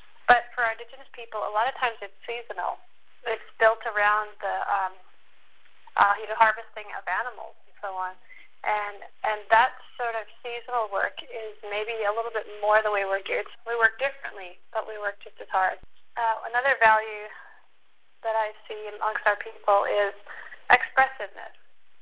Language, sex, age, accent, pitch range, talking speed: English, female, 30-49, American, 210-240 Hz, 165 wpm